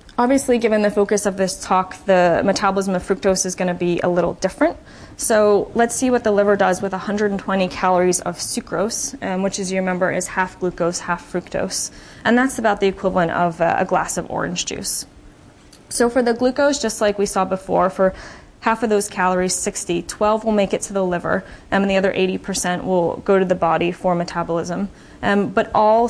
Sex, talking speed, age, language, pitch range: female, 200 wpm, 20-39, English, 180-215 Hz